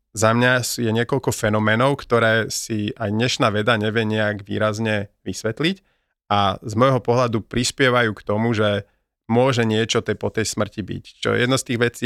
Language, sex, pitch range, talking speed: Slovak, male, 105-120 Hz, 165 wpm